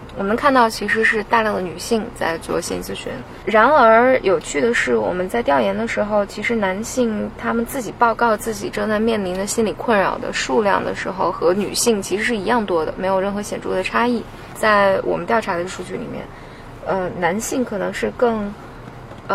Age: 20-39